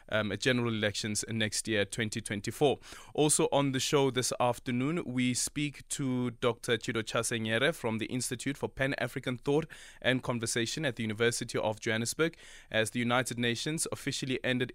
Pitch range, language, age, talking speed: 110-130 Hz, English, 20-39, 150 wpm